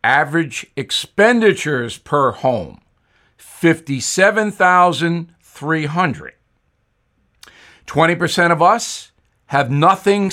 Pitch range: 135-185 Hz